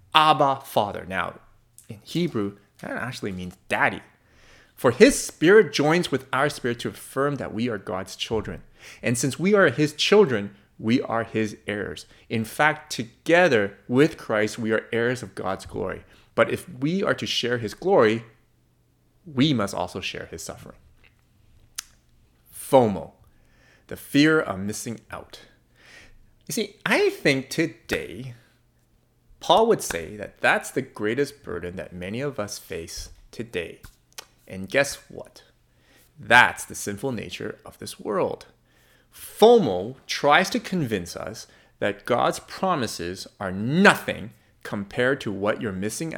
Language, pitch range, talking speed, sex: English, 110-165 Hz, 140 wpm, male